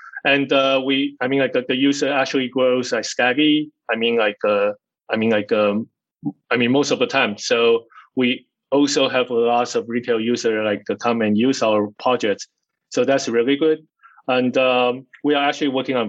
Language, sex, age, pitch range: English, male, 20-39, 120-150 Hz